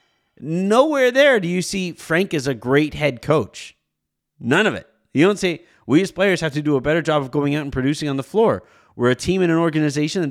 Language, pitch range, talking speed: English, 110-155 Hz, 240 wpm